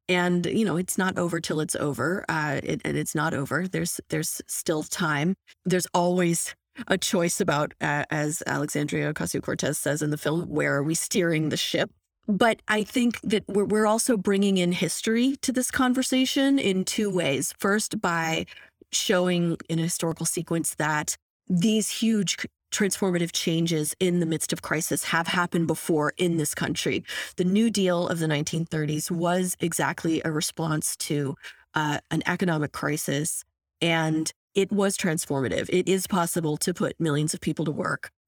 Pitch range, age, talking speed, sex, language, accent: 155-185 Hz, 30-49, 165 wpm, female, English, American